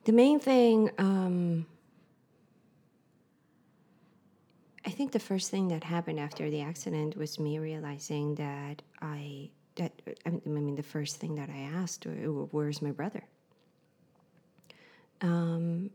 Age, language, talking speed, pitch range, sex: 30-49, English, 120 wpm, 155-180 Hz, female